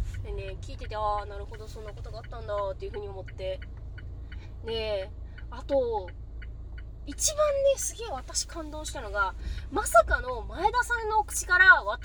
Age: 20-39